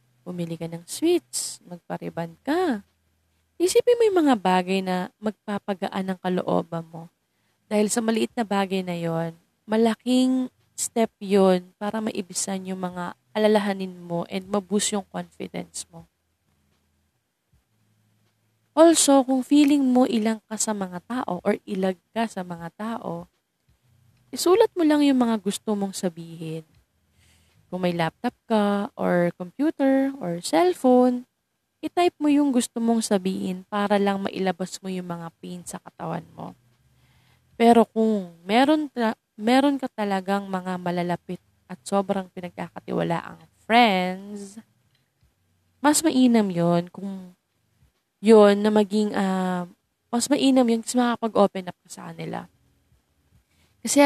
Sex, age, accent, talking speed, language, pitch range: female, 20-39, native, 130 wpm, Filipino, 175-235 Hz